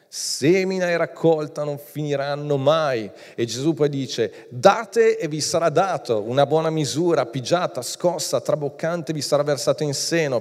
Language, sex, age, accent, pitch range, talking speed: Italian, male, 40-59, native, 145-180 Hz, 150 wpm